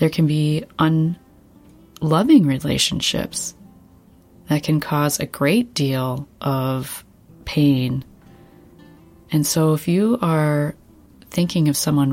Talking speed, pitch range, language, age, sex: 105 wpm, 135-160 Hz, English, 30-49, female